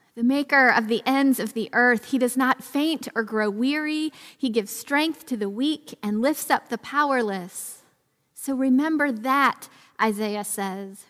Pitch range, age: 210-260 Hz, 40-59